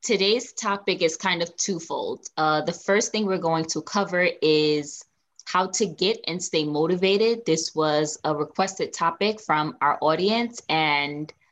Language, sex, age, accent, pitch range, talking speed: English, female, 20-39, American, 155-195 Hz, 155 wpm